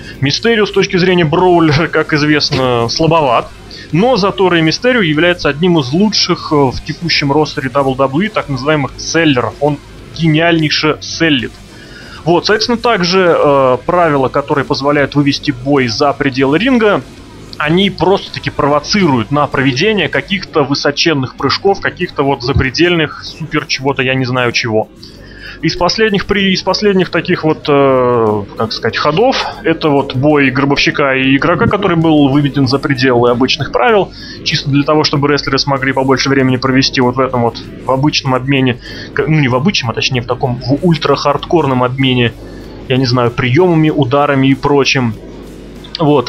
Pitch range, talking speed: 130-160 Hz, 145 wpm